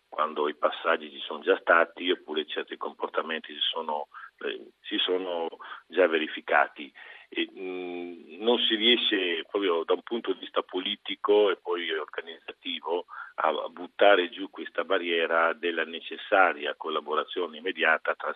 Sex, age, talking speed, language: male, 50-69, 140 wpm, Italian